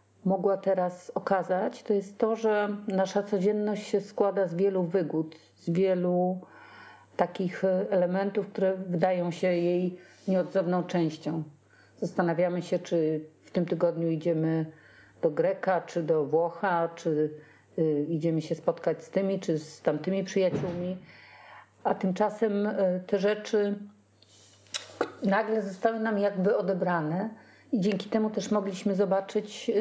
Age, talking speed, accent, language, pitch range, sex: 40-59, 125 wpm, native, Polish, 175-205 Hz, female